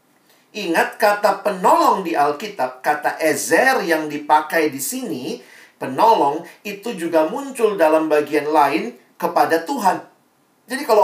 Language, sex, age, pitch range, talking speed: Indonesian, male, 40-59, 150-210 Hz, 120 wpm